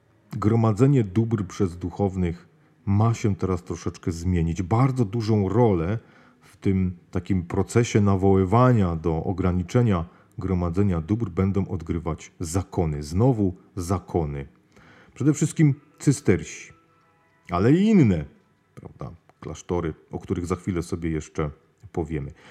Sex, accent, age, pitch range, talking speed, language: male, native, 40-59, 90-120 Hz, 105 wpm, Polish